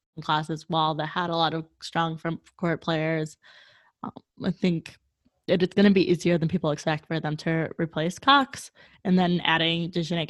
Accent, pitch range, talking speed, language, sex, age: American, 165-205 Hz, 185 wpm, English, female, 20-39